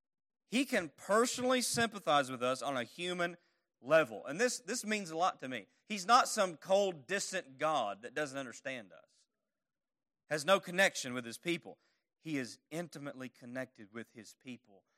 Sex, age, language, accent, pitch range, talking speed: male, 30-49, English, American, 115-185 Hz, 165 wpm